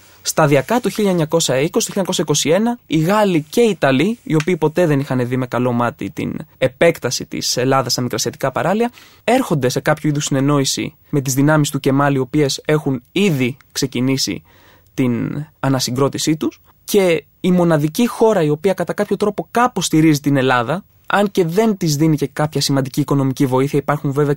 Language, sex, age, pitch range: Greek, male, 20-39, 135-190 Hz